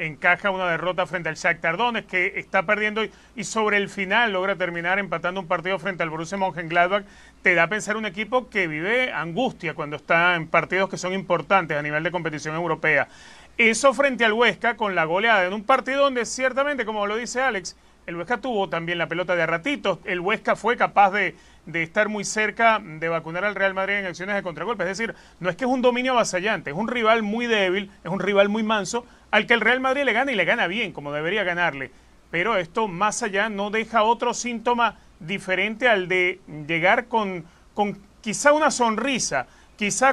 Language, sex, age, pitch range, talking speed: Spanish, male, 30-49, 180-230 Hz, 210 wpm